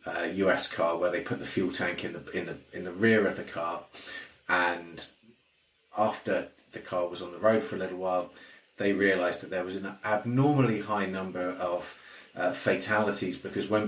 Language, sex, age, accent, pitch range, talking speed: English, male, 30-49, British, 90-110 Hz, 195 wpm